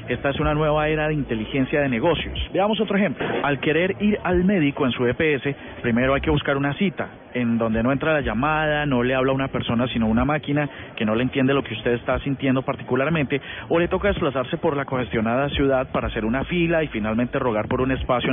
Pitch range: 125-155 Hz